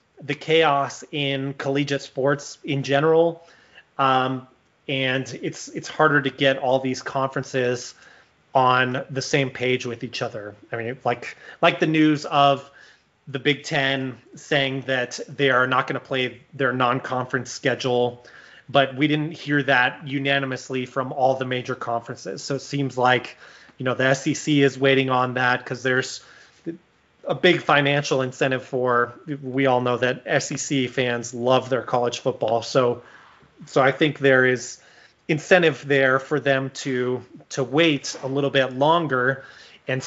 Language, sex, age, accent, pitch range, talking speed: English, male, 30-49, American, 130-145 Hz, 155 wpm